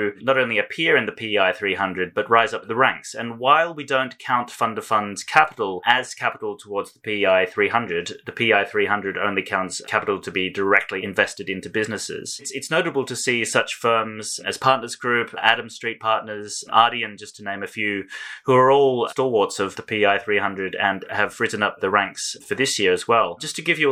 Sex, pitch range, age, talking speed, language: male, 105-125 Hz, 30-49, 200 wpm, English